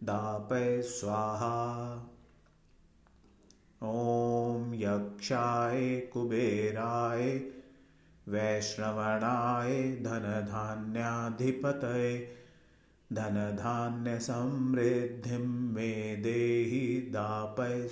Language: Hindi